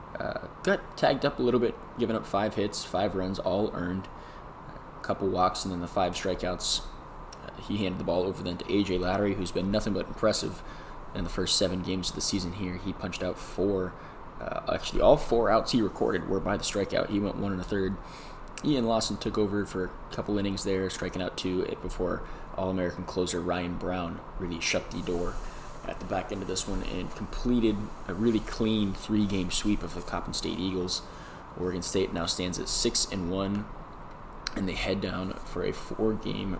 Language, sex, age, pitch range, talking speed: English, male, 20-39, 90-110 Hz, 200 wpm